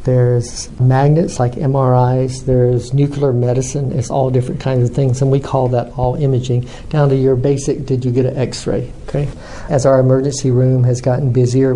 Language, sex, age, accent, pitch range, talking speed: English, male, 50-69, American, 125-140 Hz, 185 wpm